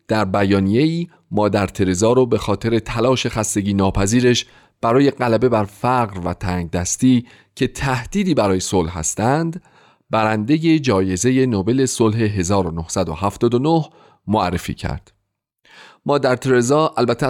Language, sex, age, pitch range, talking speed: Persian, male, 40-59, 95-125 Hz, 110 wpm